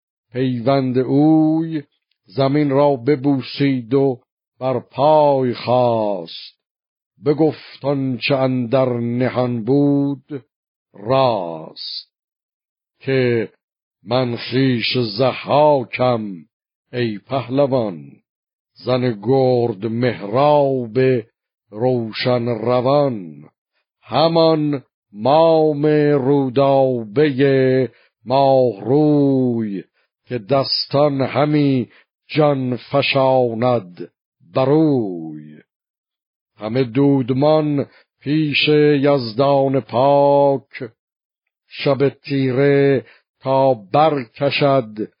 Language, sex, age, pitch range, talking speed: Persian, male, 60-79, 120-145 Hz, 60 wpm